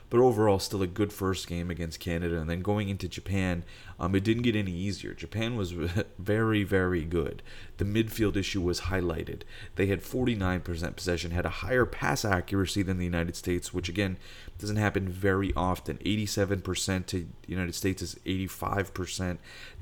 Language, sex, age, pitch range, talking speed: English, male, 30-49, 85-105 Hz, 170 wpm